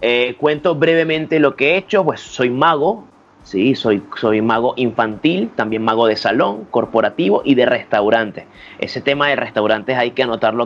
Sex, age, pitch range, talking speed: male, 30-49, 115-145 Hz, 170 wpm